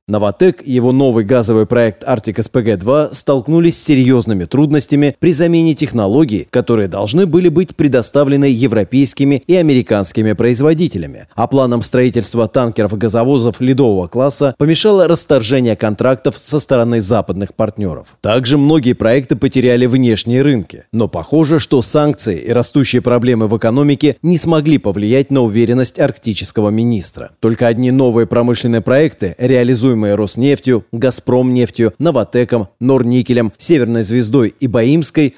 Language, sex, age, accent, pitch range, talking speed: Russian, male, 30-49, native, 115-145 Hz, 130 wpm